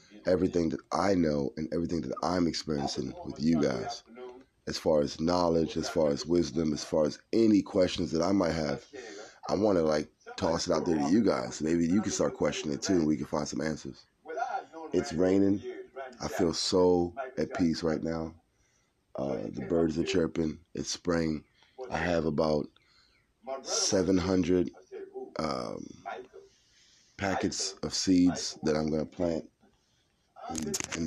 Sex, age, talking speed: male, 30-49, 160 wpm